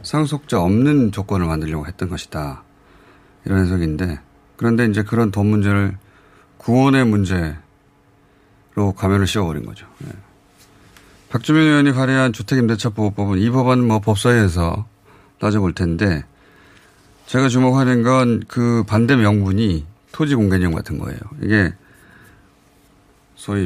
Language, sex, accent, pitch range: Korean, male, native, 95-130 Hz